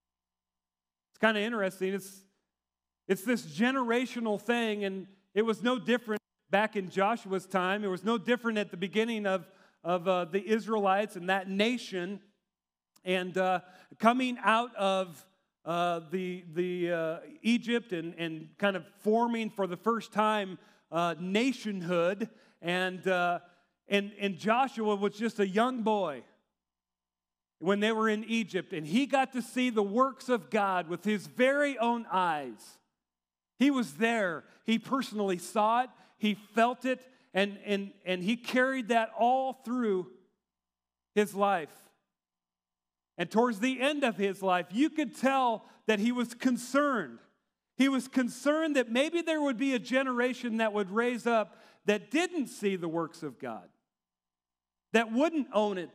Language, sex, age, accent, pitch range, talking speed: English, male, 40-59, American, 180-235 Hz, 150 wpm